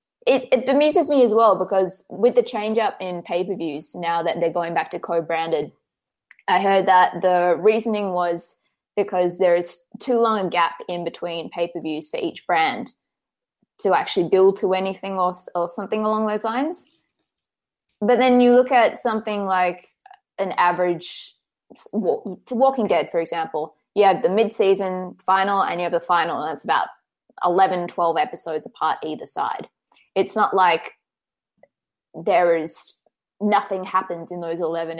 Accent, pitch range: Australian, 175-220 Hz